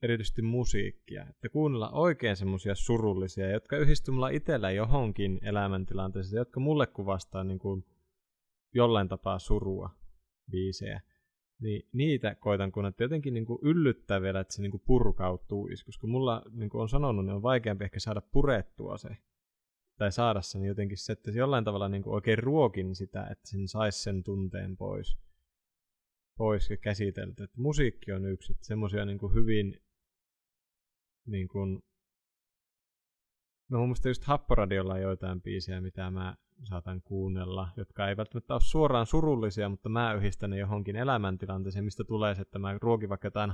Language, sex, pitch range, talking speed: Finnish, male, 95-115 Hz, 150 wpm